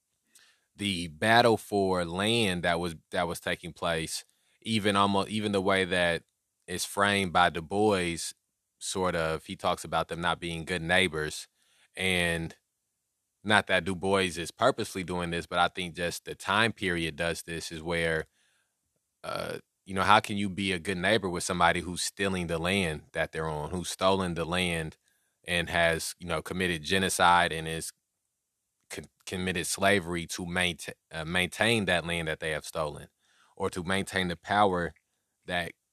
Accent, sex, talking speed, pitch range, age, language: American, male, 165 wpm, 85-100 Hz, 20-39, English